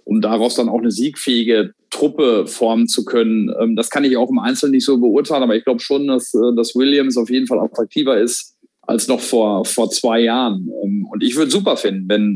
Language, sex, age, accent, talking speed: German, male, 40-59, German, 210 wpm